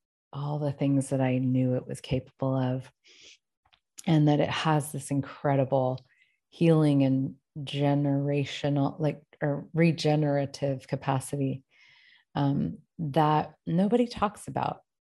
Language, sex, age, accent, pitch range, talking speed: English, female, 30-49, American, 135-155 Hz, 110 wpm